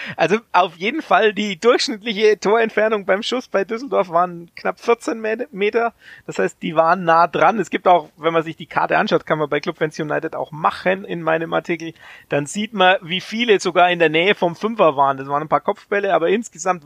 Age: 30-49